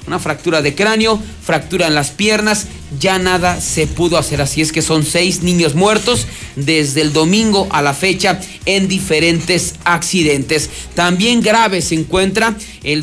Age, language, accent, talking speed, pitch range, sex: 40-59, Spanish, Mexican, 155 wpm, 155-200 Hz, male